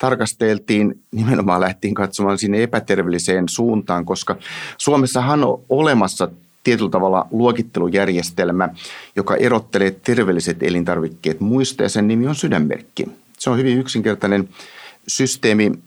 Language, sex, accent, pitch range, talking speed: Finnish, male, native, 90-115 Hz, 110 wpm